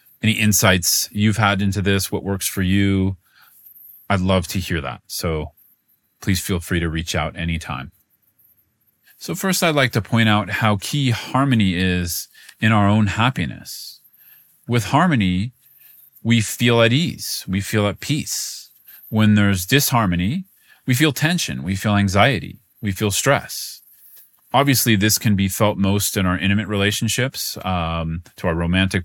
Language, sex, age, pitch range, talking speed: English, male, 30-49, 95-120 Hz, 155 wpm